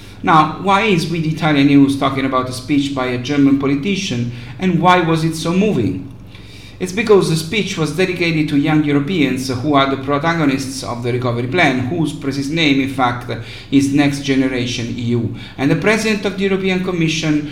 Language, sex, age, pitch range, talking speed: English, male, 50-69, 135-170 Hz, 180 wpm